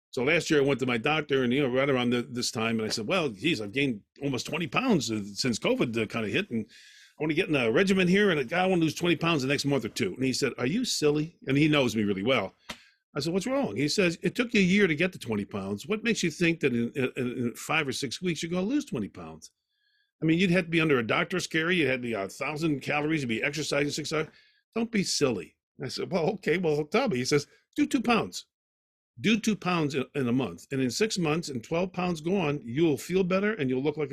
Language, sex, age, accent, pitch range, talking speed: English, male, 50-69, American, 125-185 Hz, 275 wpm